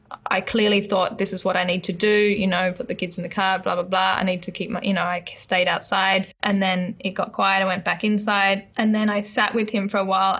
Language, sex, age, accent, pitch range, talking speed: English, female, 10-29, Australian, 180-205 Hz, 285 wpm